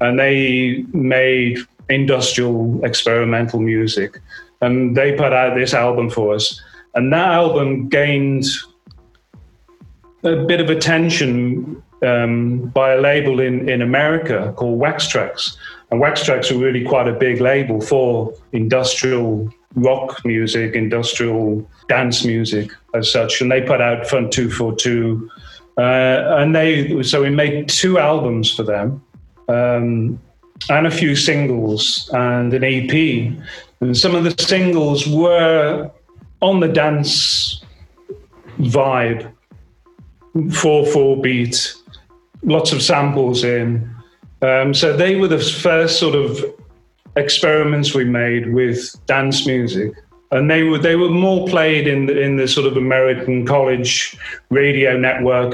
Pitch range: 120-150 Hz